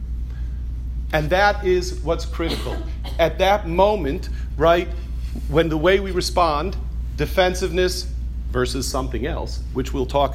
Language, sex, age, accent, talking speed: English, male, 40-59, American, 120 wpm